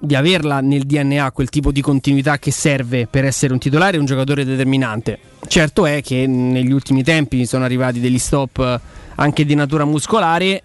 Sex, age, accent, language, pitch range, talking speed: male, 20-39, native, Italian, 125-150 Hz, 180 wpm